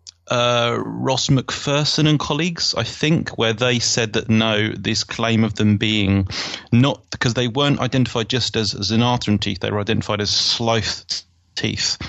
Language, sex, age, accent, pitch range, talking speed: English, male, 30-49, British, 100-120 Hz, 160 wpm